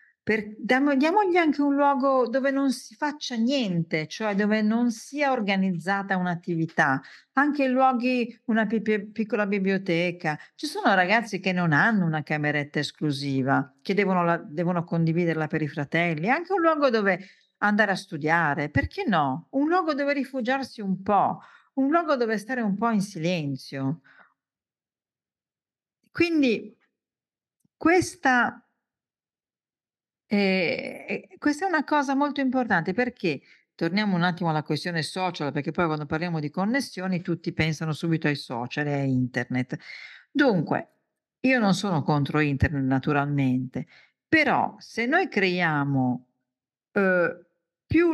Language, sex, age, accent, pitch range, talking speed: Italian, female, 50-69, native, 155-255 Hz, 125 wpm